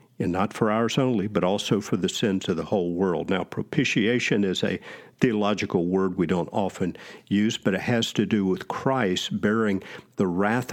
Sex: male